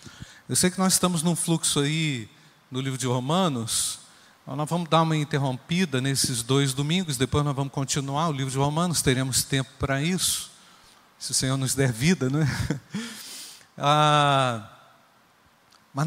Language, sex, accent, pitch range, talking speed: Portuguese, male, Brazilian, 140-195 Hz, 155 wpm